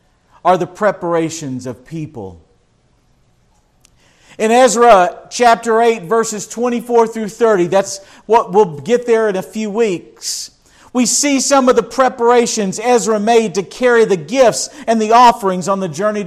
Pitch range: 180-235 Hz